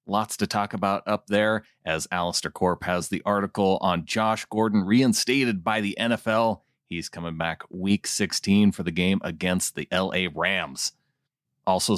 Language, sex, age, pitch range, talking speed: English, male, 30-49, 90-115 Hz, 160 wpm